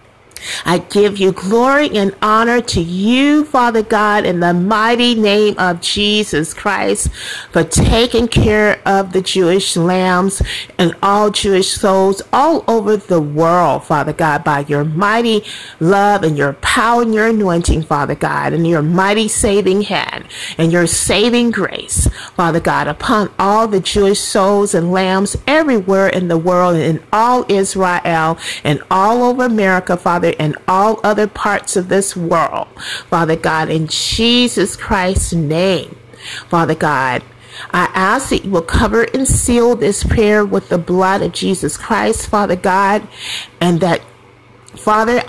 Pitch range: 170-215 Hz